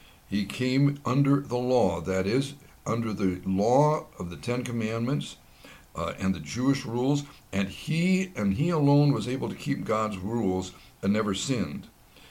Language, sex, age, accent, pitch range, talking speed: English, male, 60-79, American, 95-140 Hz, 160 wpm